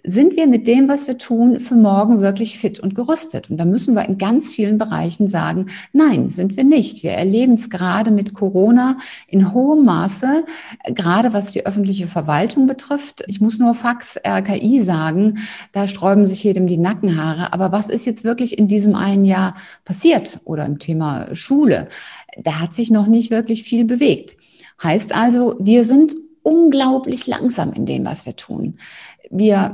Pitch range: 195-245 Hz